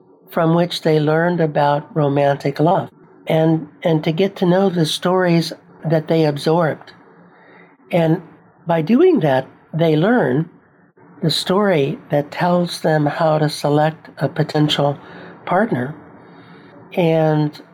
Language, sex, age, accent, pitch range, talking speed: English, male, 60-79, American, 150-175 Hz, 120 wpm